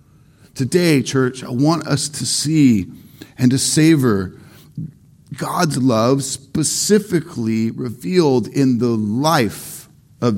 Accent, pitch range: American, 130-170 Hz